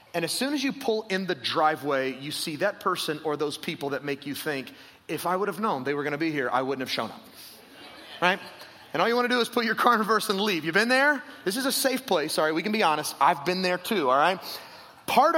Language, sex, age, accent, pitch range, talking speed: English, male, 30-49, American, 150-210 Hz, 275 wpm